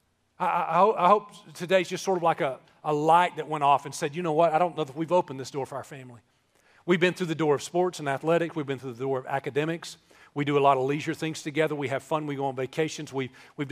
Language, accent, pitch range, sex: English, American, 140-180 Hz, male